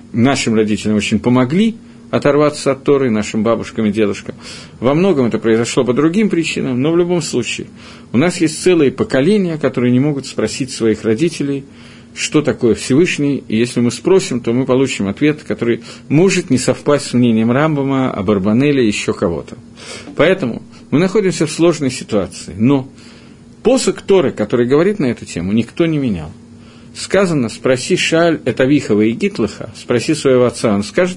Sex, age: male, 50-69